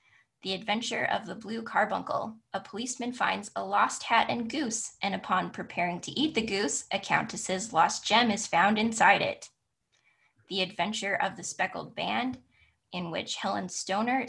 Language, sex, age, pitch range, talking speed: English, female, 10-29, 175-225 Hz, 165 wpm